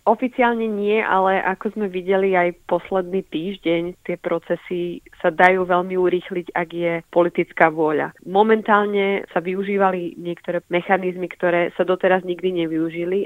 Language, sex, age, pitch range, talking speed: Slovak, female, 20-39, 165-180 Hz, 130 wpm